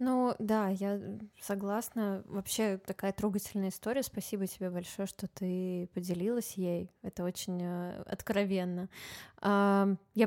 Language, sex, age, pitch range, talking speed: Russian, female, 20-39, 190-220 Hz, 110 wpm